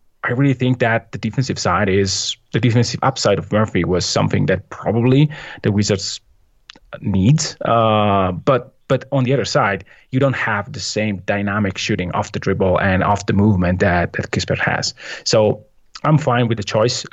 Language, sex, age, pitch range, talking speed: English, male, 20-39, 100-120 Hz, 180 wpm